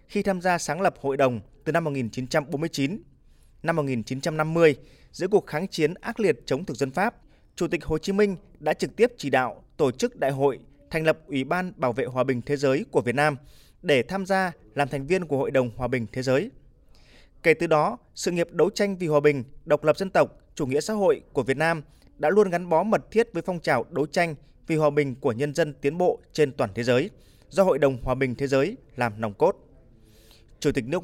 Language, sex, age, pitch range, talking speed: Vietnamese, male, 20-39, 135-180 Hz, 230 wpm